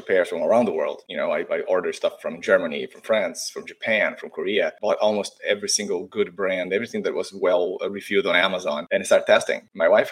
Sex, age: male, 20-39